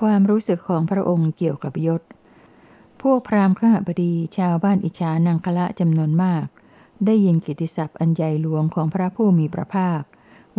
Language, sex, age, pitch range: Thai, female, 60-79, 155-185 Hz